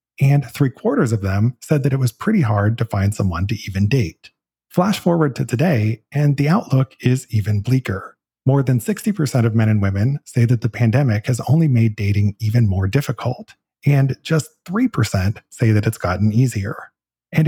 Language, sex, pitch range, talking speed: English, male, 105-145 Hz, 180 wpm